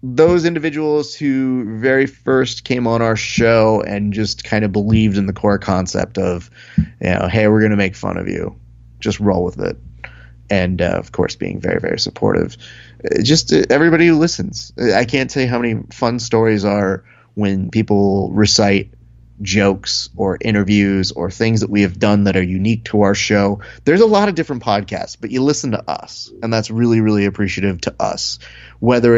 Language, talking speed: English, 185 wpm